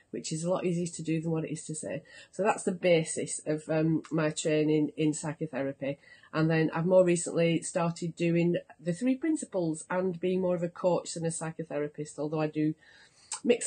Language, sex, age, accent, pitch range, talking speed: English, female, 30-49, British, 170-255 Hz, 200 wpm